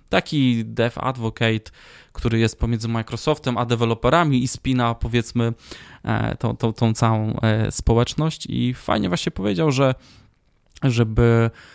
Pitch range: 115-135 Hz